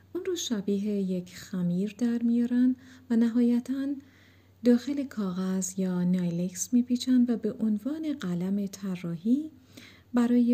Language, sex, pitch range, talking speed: Persian, female, 185-250 Hz, 115 wpm